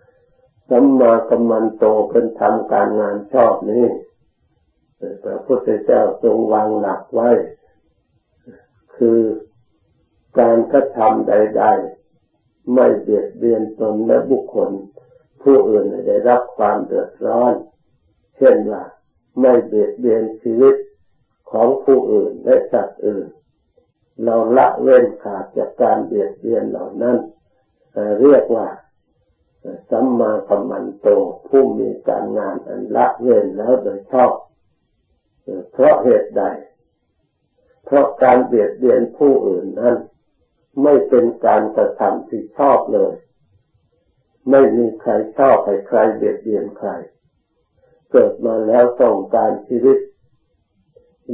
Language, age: Thai, 60-79